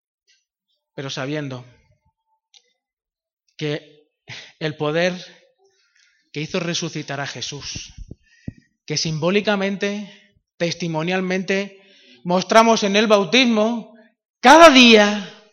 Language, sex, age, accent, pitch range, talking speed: Spanish, male, 30-49, Spanish, 155-230 Hz, 75 wpm